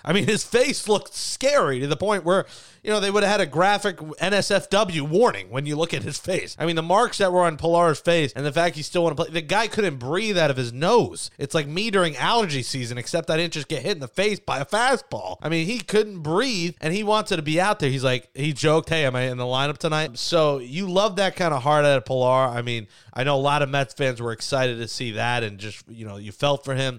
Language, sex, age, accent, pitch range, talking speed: English, male, 30-49, American, 130-185 Hz, 275 wpm